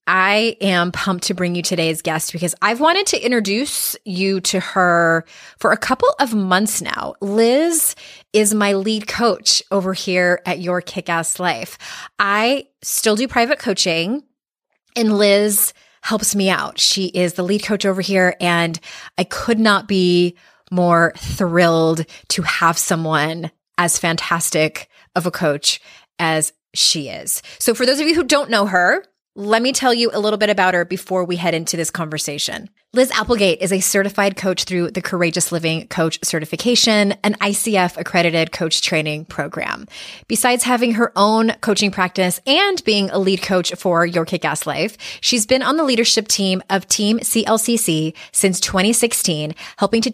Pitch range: 175-225 Hz